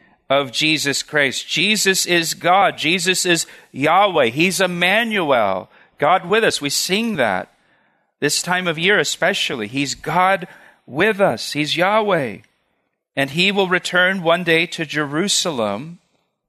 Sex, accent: male, American